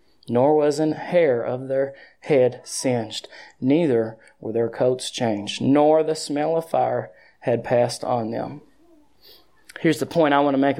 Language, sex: English, male